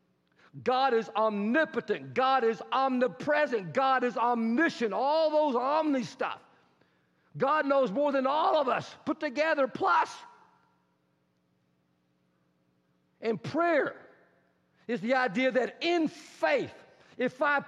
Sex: male